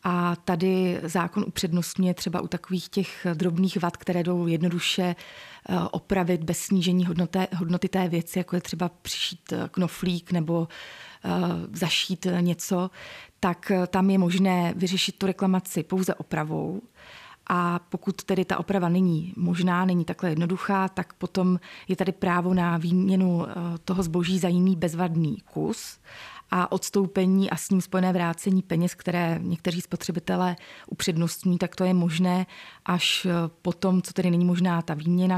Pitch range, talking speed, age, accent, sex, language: 175-185 Hz, 140 wpm, 30-49, native, female, Czech